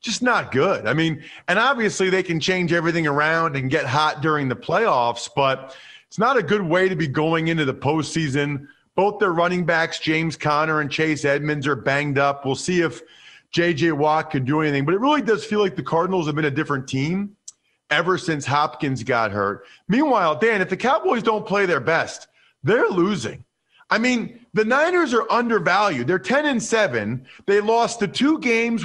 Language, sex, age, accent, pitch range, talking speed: English, male, 40-59, American, 155-220 Hz, 195 wpm